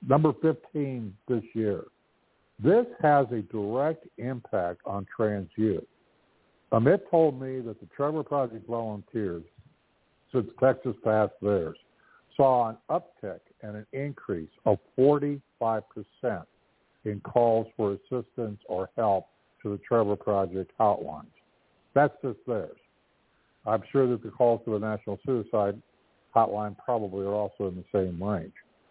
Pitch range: 105-130 Hz